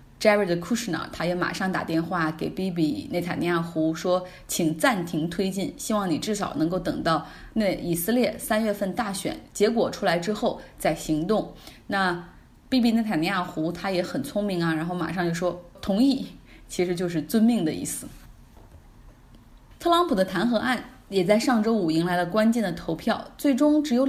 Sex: female